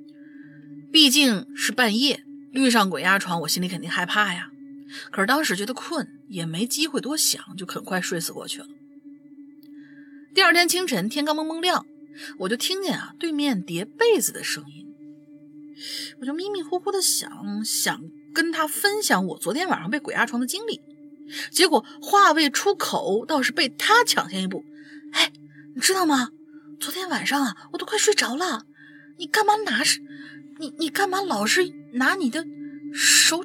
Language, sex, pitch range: Chinese, female, 270-330 Hz